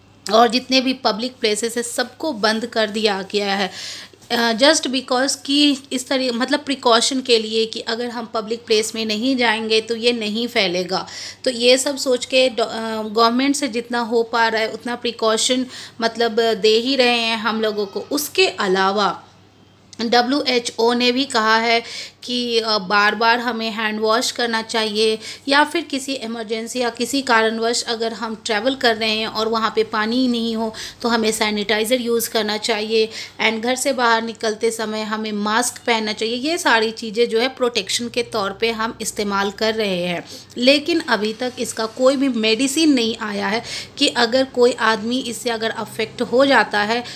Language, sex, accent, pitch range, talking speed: Hindi, female, native, 220-250 Hz, 175 wpm